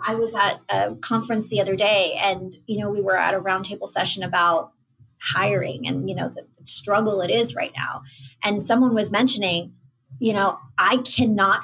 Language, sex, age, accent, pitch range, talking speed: English, female, 20-39, American, 175-230 Hz, 185 wpm